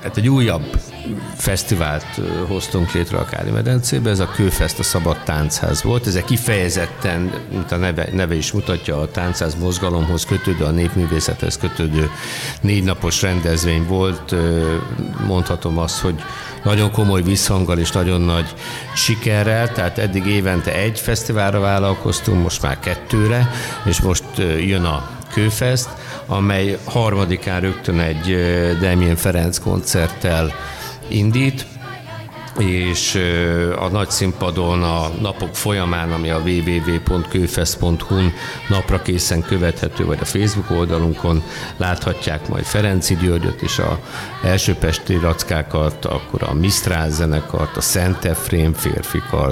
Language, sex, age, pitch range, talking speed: Hungarian, male, 60-79, 85-100 Hz, 120 wpm